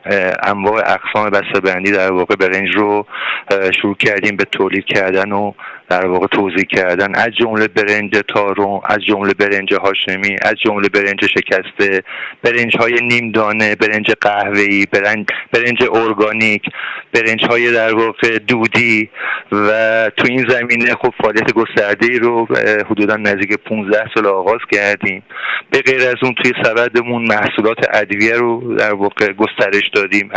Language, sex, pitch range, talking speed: Persian, male, 105-115 Hz, 140 wpm